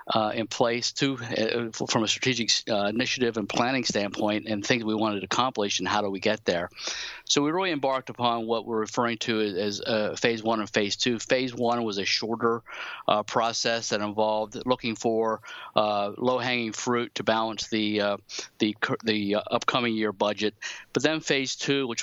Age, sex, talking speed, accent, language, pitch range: 50-69, male, 190 wpm, American, English, 105-120 Hz